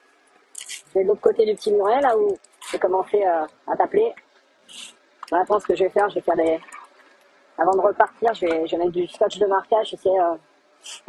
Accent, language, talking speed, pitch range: French, French, 205 wpm, 185-250 Hz